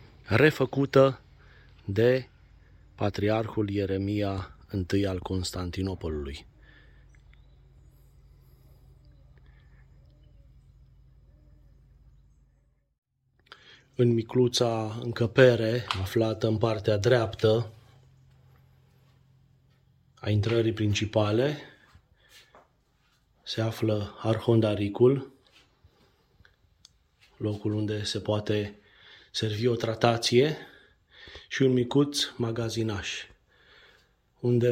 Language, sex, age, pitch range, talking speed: Romanian, male, 30-49, 105-125 Hz, 55 wpm